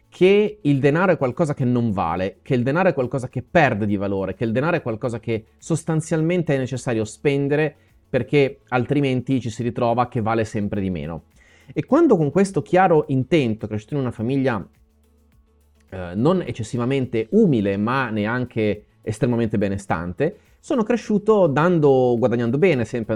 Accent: native